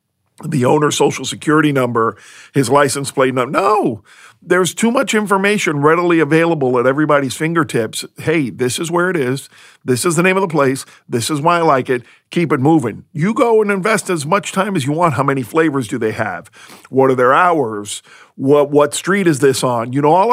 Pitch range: 130-175 Hz